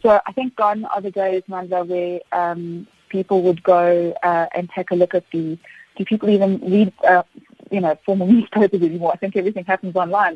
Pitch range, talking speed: 170-190 Hz, 205 wpm